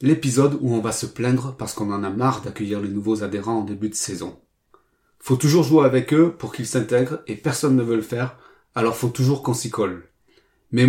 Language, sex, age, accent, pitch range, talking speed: French, male, 30-49, French, 110-140 Hz, 220 wpm